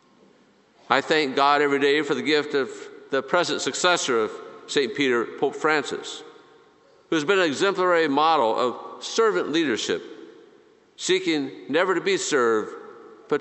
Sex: male